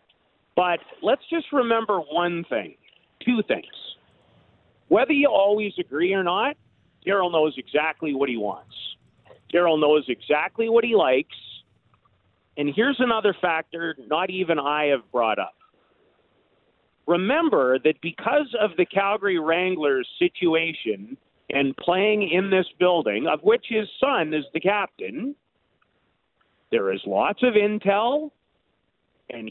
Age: 50-69